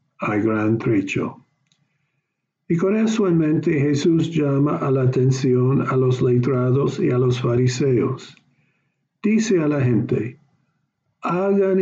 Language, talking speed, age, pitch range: English, 125 wpm, 50-69, 125-150 Hz